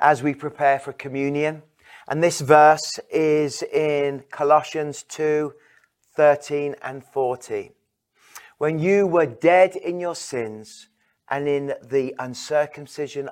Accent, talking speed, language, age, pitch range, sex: British, 115 wpm, English, 40-59, 140-180 Hz, male